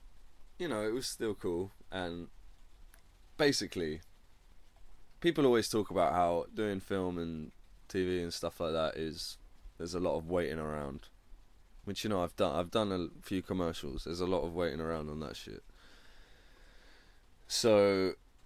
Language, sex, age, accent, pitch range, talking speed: English, male, 20-39, British, 85-105 Hz, 155 wpm